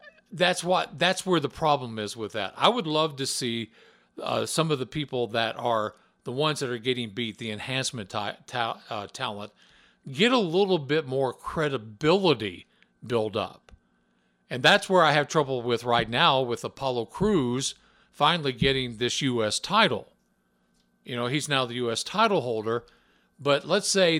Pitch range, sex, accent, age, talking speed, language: 120-175 Hz, male, American, 50-69, 170 wpm, English